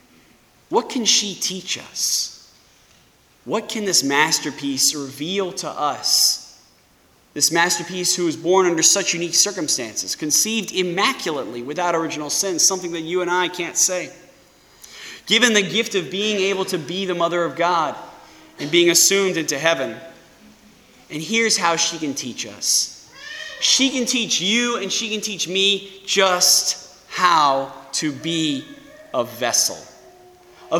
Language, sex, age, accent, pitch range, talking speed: English, male, 20-39, American, 170-220 Hz, 140 wpm